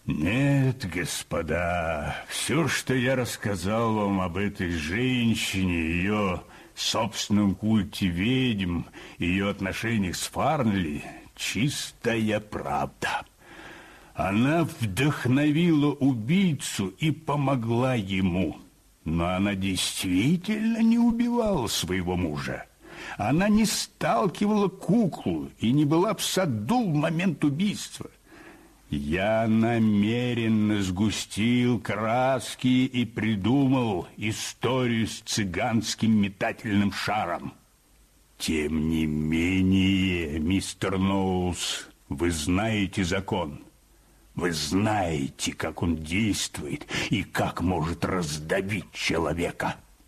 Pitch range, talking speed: 95-130 Hz, 90 wpm